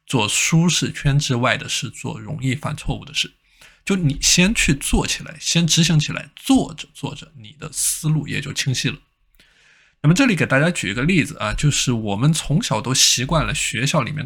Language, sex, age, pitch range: Chinese, male, 20-39, 125-160 Hz